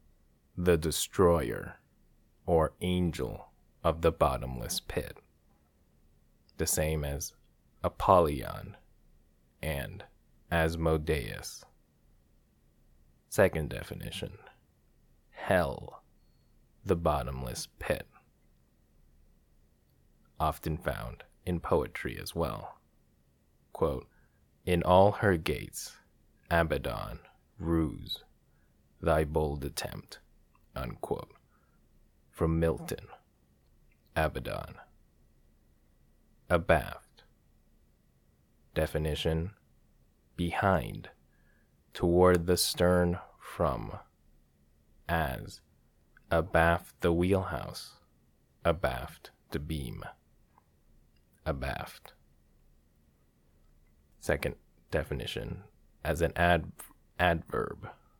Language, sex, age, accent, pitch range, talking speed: English, male, 30-49, American, 70-85 Hz, 60 wpm